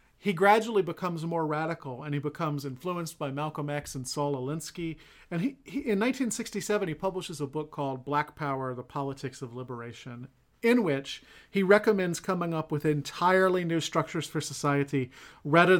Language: English